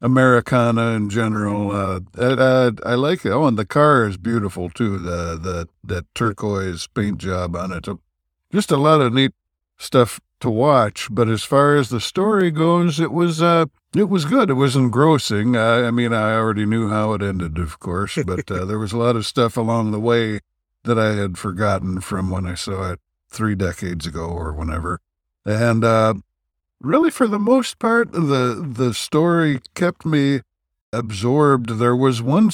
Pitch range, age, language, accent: 100-135 Hz, 60-79, English, American